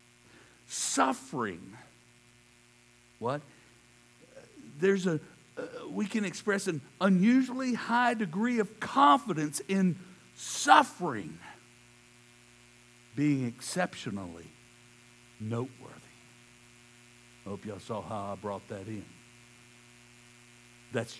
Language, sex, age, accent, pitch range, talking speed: English, male, 60-79, American, 120-150 Hz, 80 wpm